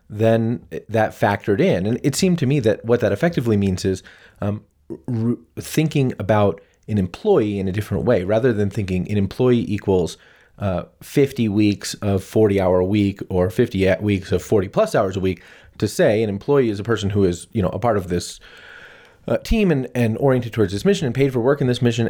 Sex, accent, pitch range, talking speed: male, American, 95-115 Hz, 210 wpm